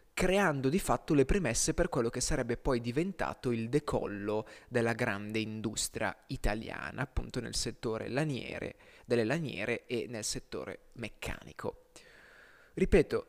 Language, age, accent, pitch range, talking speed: Italian, 20-39, native, 115-155 Hz, 125 wpm